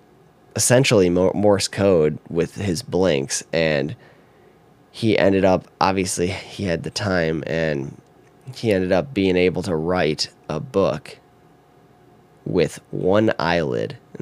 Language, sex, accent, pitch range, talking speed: English, male, American, 80-100 Hz, 120 wpm